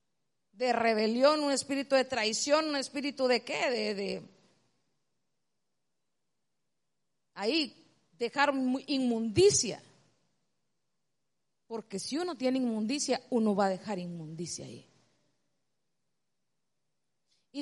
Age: 40-59